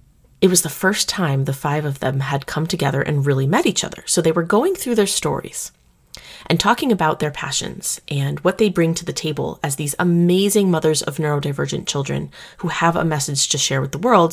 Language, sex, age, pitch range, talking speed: English, female, 30-49, 150-205 Hz, 220 wpm